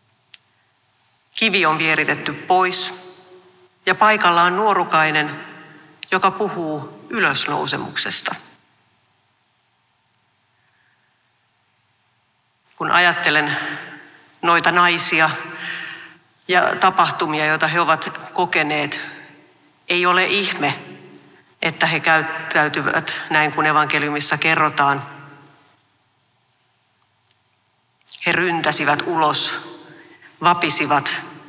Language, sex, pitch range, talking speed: Finnish, female, 130-175 Hz, 65 wpm